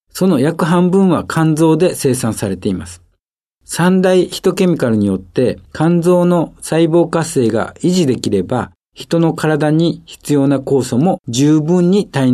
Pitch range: 115-165 Hz